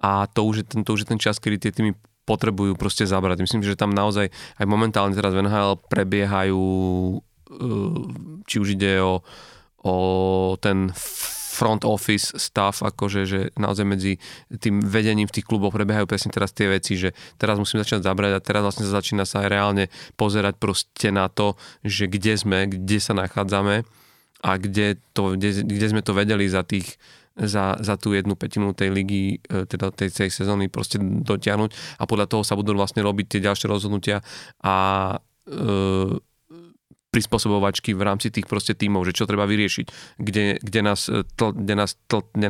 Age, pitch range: 30-49, 100-105 Hz